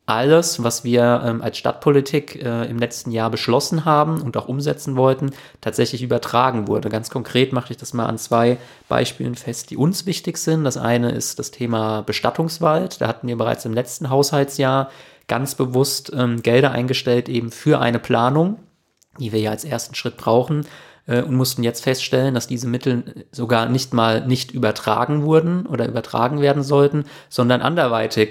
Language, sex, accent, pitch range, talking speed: German, male, German, 115-135 Hz, 165 wpm